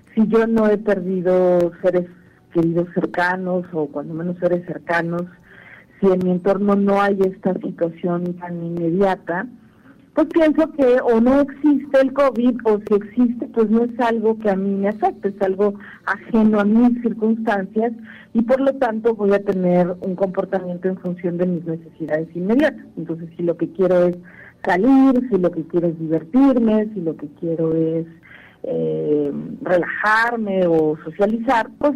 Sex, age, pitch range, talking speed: female, 40-59, 175-225 Hz, 165 wpm